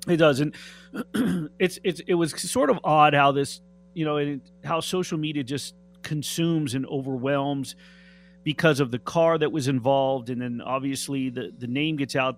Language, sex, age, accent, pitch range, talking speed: English, male, 30-49, American, 140-180 Hz, 175 wpm